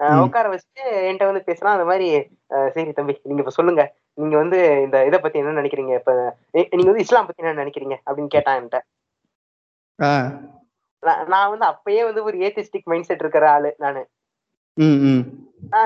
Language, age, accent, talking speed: Tamil, 20-39, native, 100 wpm